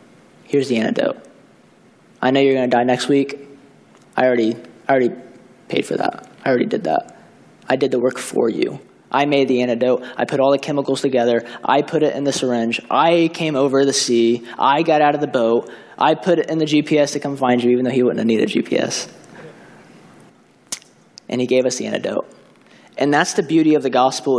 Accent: American